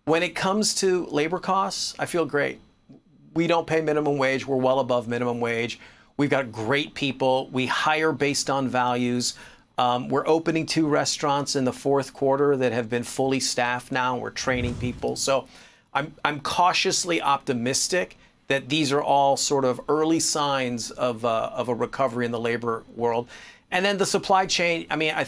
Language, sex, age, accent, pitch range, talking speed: English, male, 40-59, American, 125-155 Hz, 180 wpm